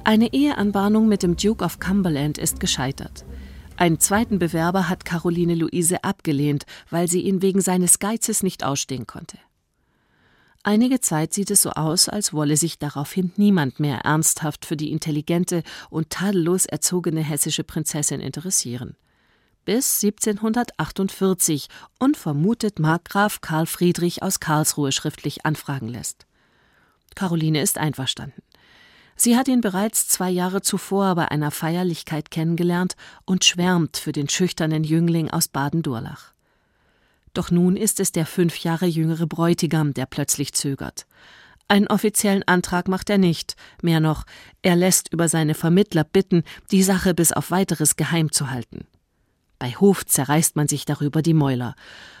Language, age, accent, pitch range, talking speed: German, 40-59, German, 150-190 Hz, 140 wpm